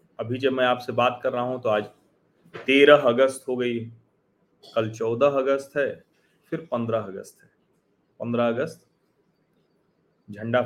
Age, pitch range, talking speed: 40-59, 125-165 Hz, 140 wpm